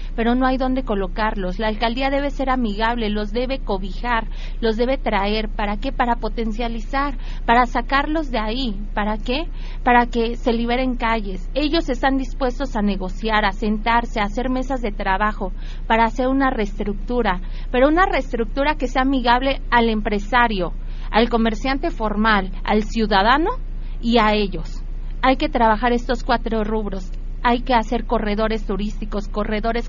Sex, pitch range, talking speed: female, 210-250 Hz, 150 wpm